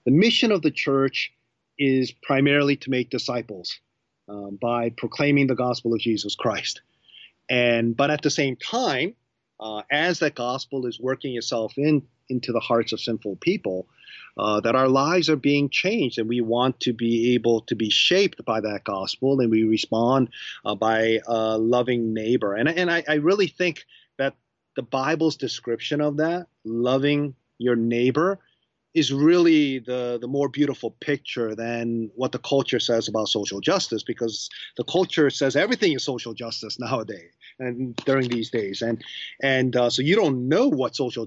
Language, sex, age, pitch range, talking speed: English, male, 30-49, 115-140 Hz, 170 wpm